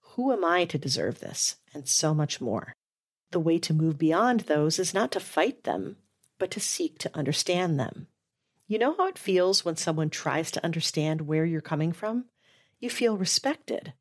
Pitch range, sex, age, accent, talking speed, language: 155-220 Hz, female, 40-59, American, 190 wpm, English